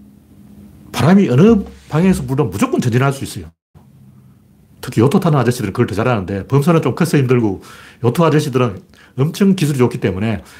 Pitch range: 115-170 Hz